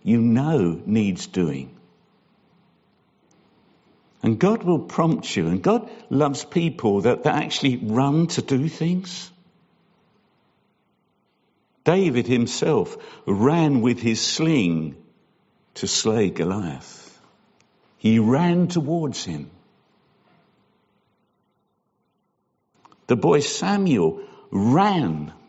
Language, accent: English, British